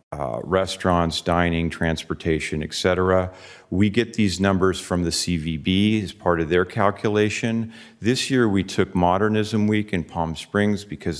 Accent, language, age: American, English, 40-59